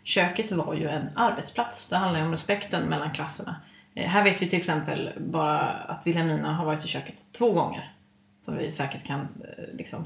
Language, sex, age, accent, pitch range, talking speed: Swedish, female, 30-49, native, 160-185 Hz, 185 wpm